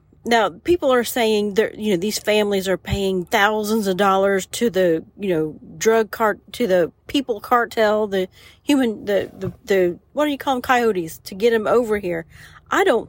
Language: English